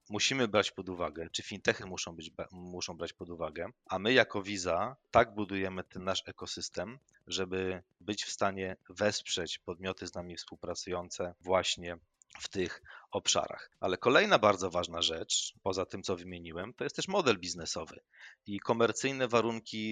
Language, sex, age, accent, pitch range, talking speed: Polish, male, 30-49, native, 90-105 Hz, 150 wpm